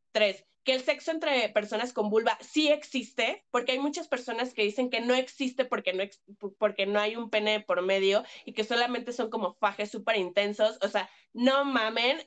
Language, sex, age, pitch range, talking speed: Spanish, female, 20-39, 205-265 Hz, 200 wpm